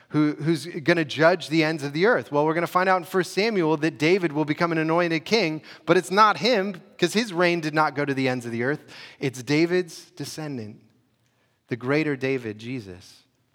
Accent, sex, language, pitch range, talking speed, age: American, male, English, 130-170 Hz, 215 wpm, 30-49